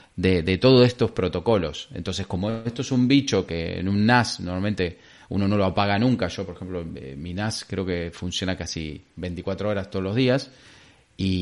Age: 30-49